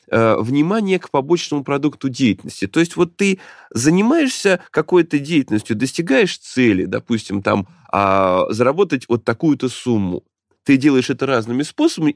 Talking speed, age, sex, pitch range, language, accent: 125 wpm, 20-39, male, 120-195 Hz, Russian, native